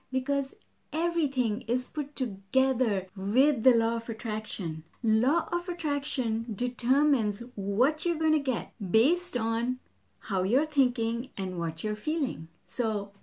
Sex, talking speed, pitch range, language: female, 130 wpm, 195-270 Hz, English